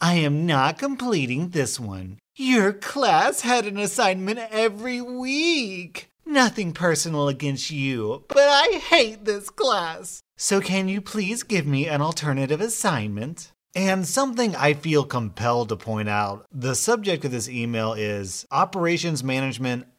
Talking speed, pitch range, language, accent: 140 wpm, 120-195 Hz, English, American